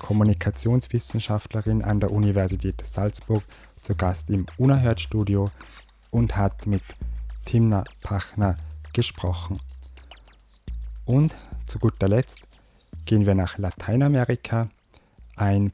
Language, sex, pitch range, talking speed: German, male, 95-110 Hz, 90 wpm